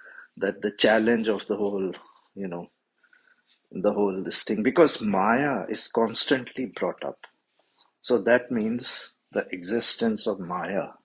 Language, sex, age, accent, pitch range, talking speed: English, male, 50-69, Indian, 100-140 Hz, 135 wpm